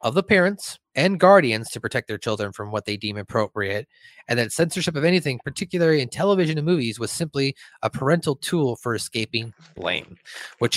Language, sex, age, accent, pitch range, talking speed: English, male, 30-49, American, 115-160 Hz, 185 wpm